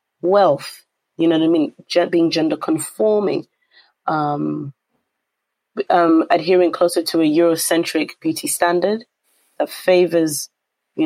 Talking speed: 115 wpm